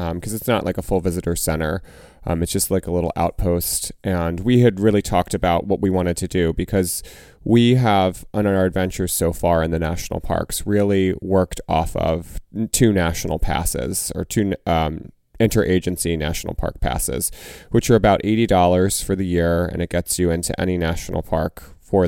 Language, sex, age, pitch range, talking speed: English, male, 30-49, 85-100 Hz, 190 wpm